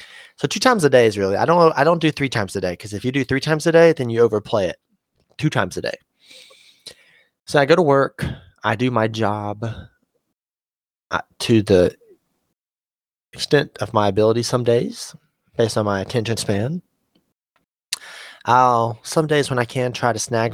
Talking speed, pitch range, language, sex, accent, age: 185 wpm, 115-185 Hz, English, male, American, 20-39